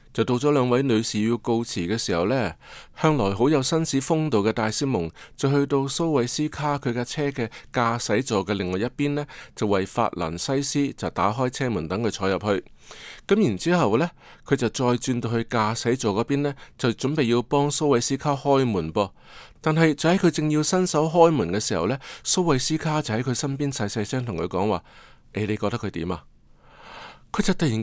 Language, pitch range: Chinese, 110-150 Hz